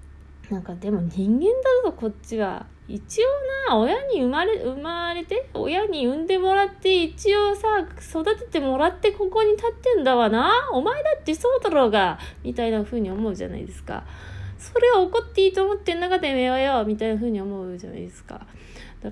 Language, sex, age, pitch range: Japanese, female, 20-39, 190-275 Hz